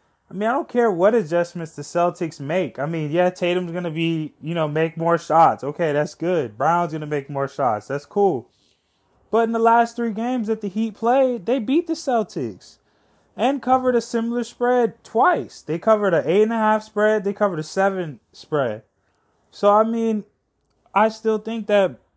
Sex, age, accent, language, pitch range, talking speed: male, 20-39, American, English, 165-225 Hz, 190 wpm